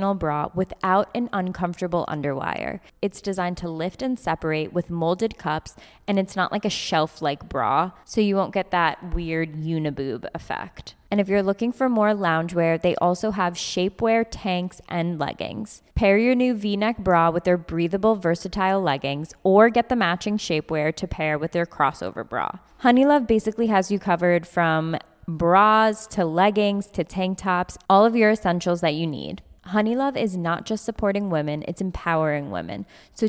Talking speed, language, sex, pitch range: 170 wpm, English, female, 165-215 Hz